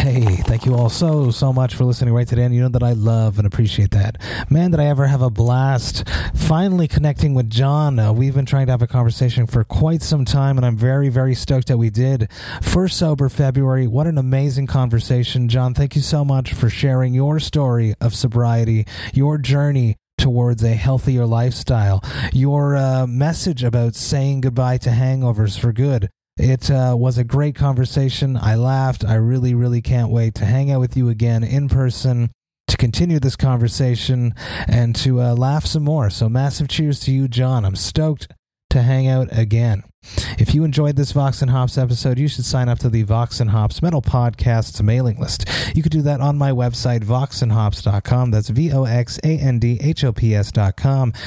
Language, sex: English, male